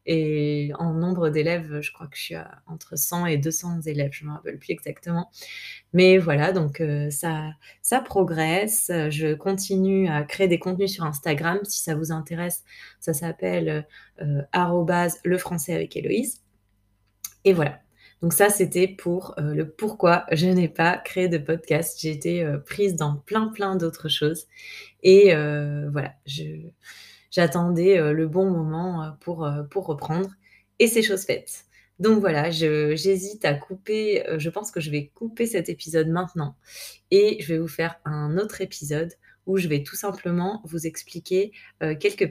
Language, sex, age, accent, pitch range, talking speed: French, female, 20-39, French, 155-190 Hz, 160 wpm